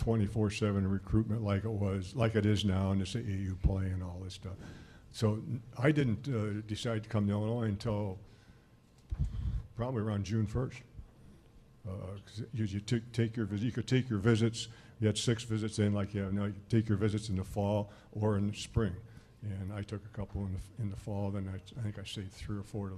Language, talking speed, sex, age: English, 225 wpm, male, 60-79